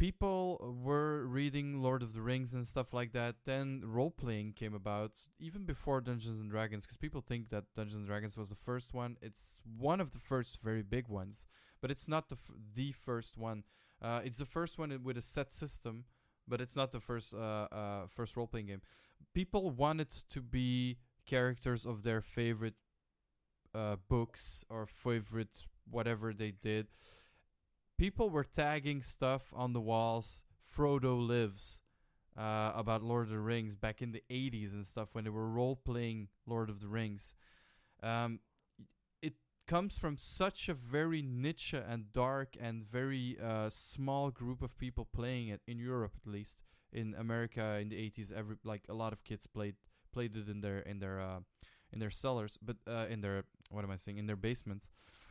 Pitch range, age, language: 105-130 Hz, 20-39, Dutch